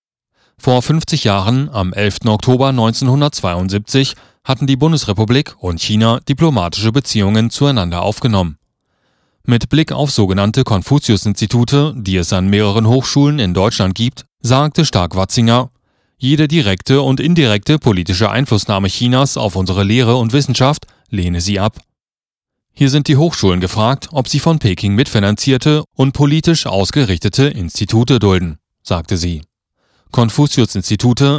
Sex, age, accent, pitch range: male, 30-49, German, 100-135 Hz